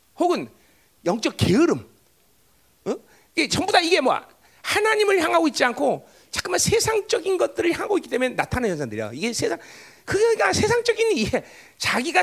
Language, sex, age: Korean, male, 40-59